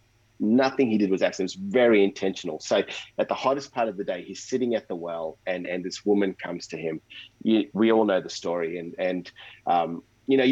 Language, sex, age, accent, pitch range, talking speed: English, male, 30-49, Australian, 95-120 Hz, 220 wpm